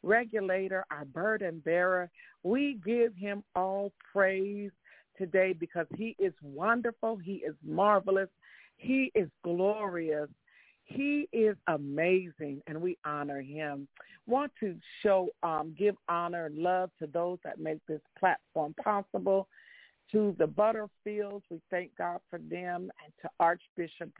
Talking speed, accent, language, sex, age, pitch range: 130 wpm, American, English, female, 50-69, 170-210 Hz